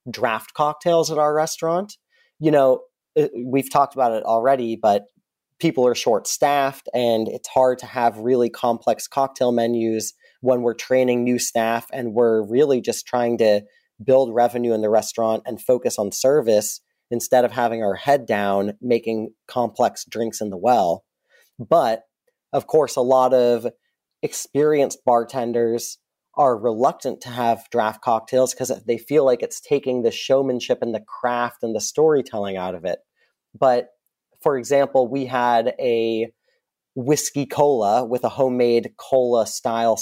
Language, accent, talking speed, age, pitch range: English, American, 155 wpm, 30-49, 115-135 Hz